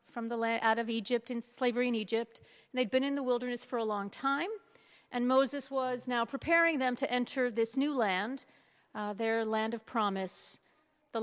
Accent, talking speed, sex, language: American, 200 wpm, female, English